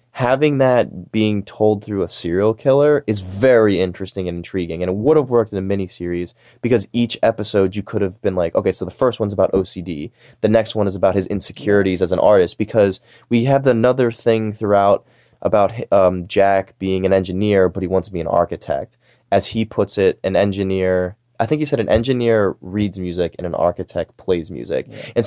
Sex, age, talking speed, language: male, 20-39, 205 wpm, English